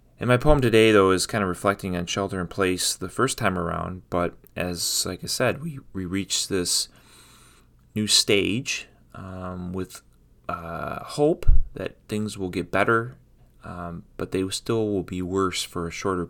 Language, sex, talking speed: English, male, 175 wpm